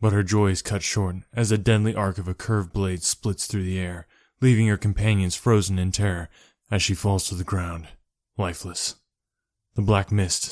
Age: 20-39